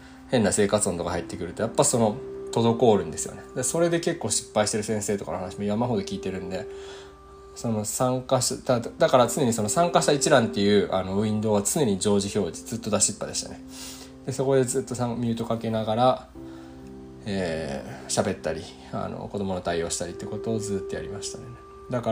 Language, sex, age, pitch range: Japanese, male, 20-39, 90-130 Hz